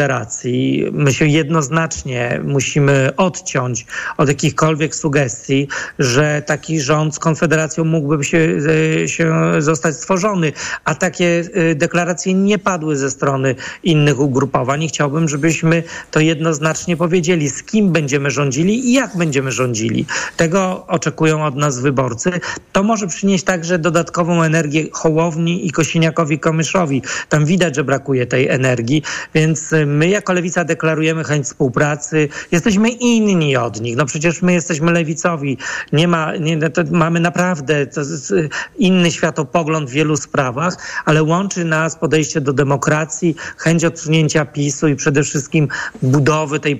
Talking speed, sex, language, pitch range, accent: 135 wpm, male, Polish, 145-170 Hz, native